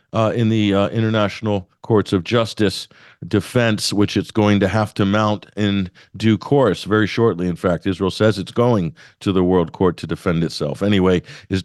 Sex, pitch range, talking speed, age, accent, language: male, 90-105 Hz, 185 wpm, 50-69, American, English